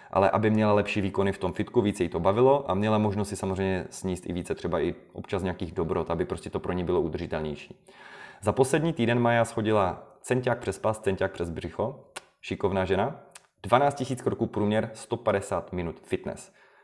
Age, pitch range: 30-49, 95-120 Hz